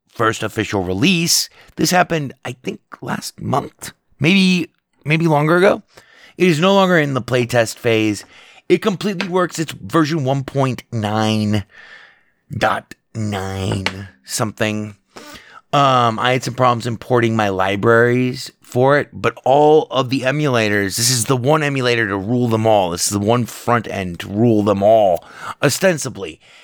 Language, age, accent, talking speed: English, 30-49, American, 145 wpm